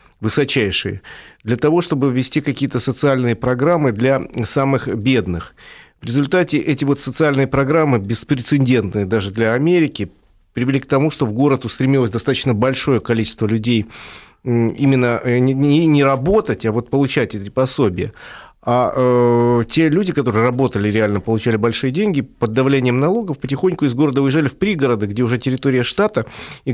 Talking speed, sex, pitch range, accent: 150 wpm, male, 115-145 Hz, native